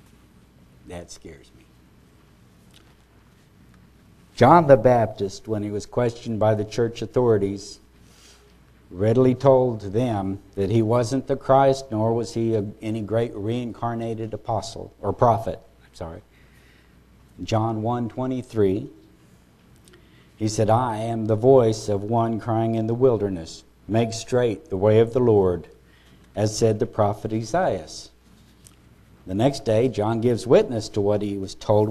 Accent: American